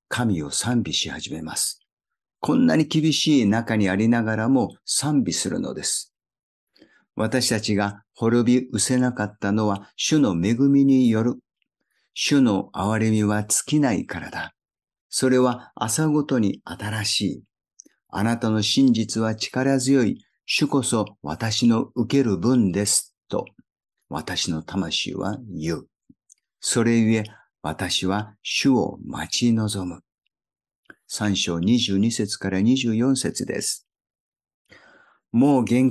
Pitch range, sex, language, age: 105-130 Hz, male, Japanese, 50-69